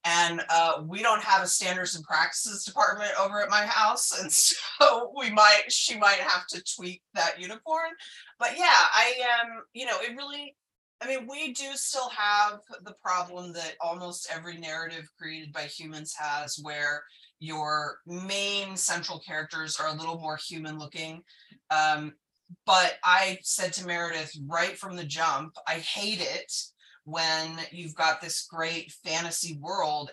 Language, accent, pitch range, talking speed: English, American, 150-180 Hz, 160 wpm